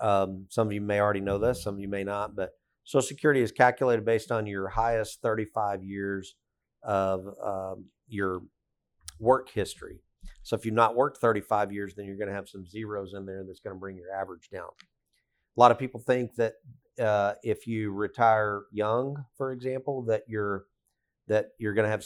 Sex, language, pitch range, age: male, English, 100-115 Hz, 40-59